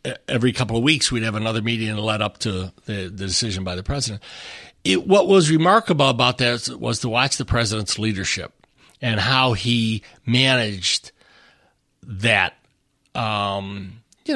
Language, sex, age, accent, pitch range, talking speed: English, male, 60-79, American, 100-130 Hz, 155 wpm